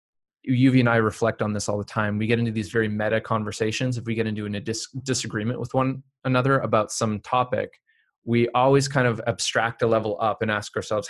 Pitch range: 105-125 Hz